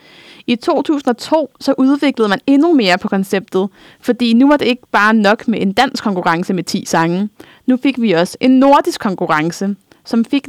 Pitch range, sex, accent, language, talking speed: 195-255 Hz, female, native, Danish, 185 wpm